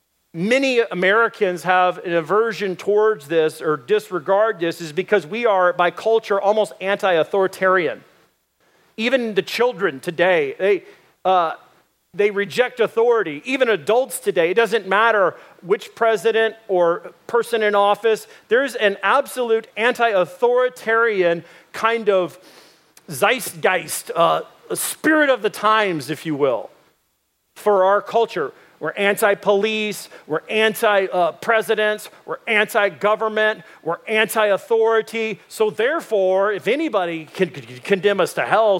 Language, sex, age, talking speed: English, male, 40-59, 115 wpm